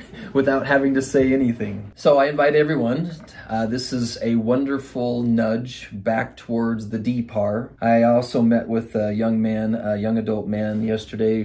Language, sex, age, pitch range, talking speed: English, male, 30-49, 110-130 Hz, 160 wpm